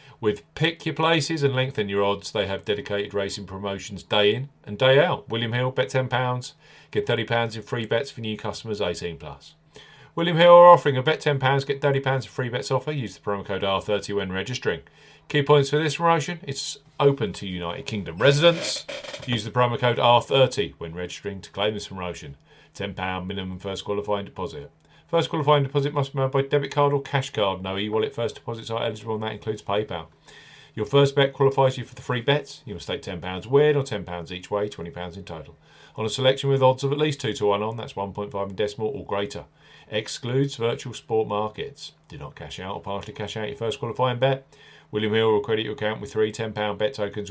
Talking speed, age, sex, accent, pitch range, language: 220 wpm, 40-59, male, British, 105-140 Hz, English